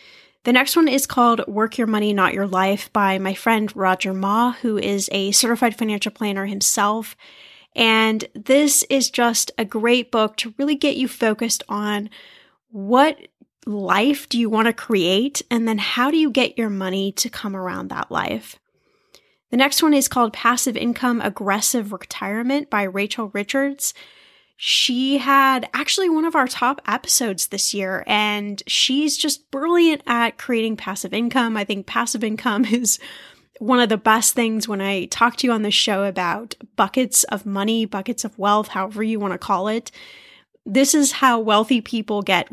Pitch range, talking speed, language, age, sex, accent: 200-250 Hz, 175 wpm, English, 10-29, female, American